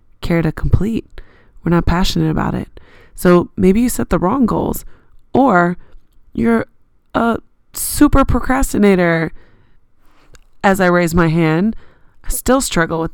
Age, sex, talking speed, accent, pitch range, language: 20-39, female, 130 wpm, American, 170-195 Hz, English